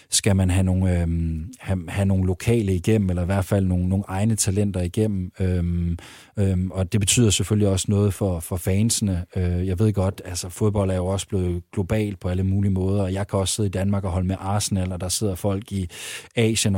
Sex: male